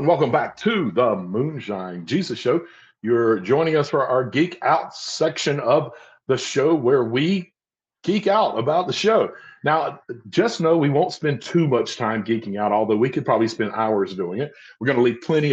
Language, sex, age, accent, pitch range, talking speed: English, male, 50-69, American, 110-160 Hz, 190 wpm